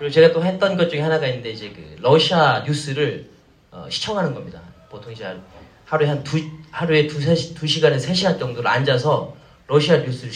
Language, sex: Korean, male